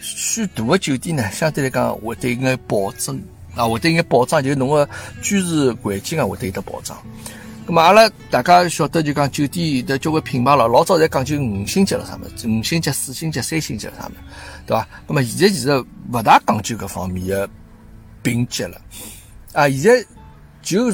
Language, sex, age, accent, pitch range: Chinese, male, 60-79, native, 110-150 Hz